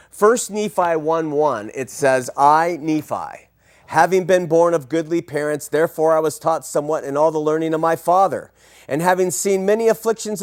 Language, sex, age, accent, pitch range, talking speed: English, male, 40-59, American, 145-185 Hz, 180 wpm